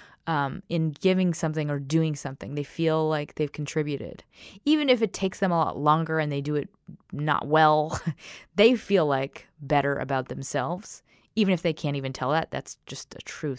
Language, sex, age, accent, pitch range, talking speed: English, female, 20-39, American, 145-175 Hz, 190 wpm